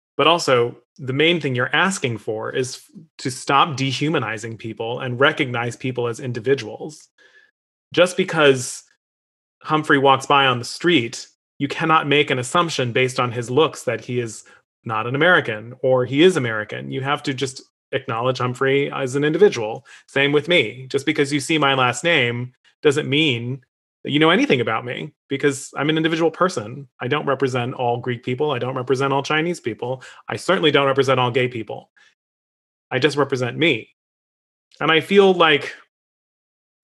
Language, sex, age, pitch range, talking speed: English, male, 30-49, 125-155 Hz, 170 wpm